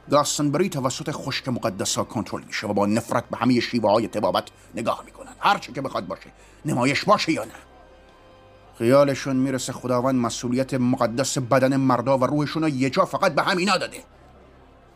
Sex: male